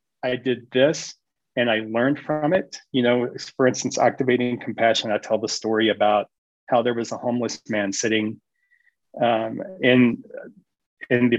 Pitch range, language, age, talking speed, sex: 110-140 Hz, English, 40-59, 160 wpm, male